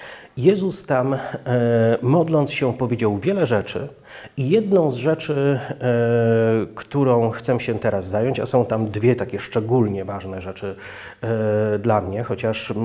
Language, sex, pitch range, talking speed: Polish, male, 110-135 Hz, 125 wpm